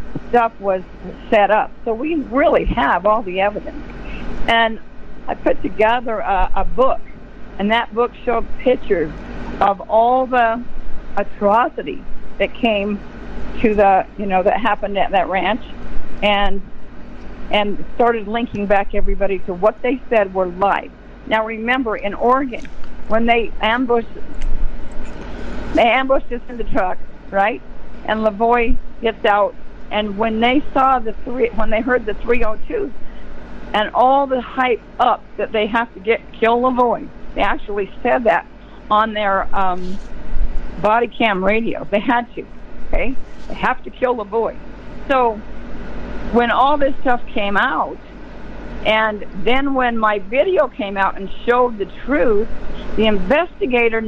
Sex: female